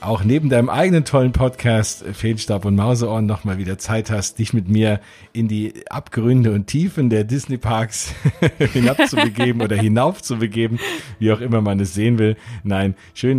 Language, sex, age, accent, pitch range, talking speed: German, male, 40-59, German, 100-125 Hz, 160 wpm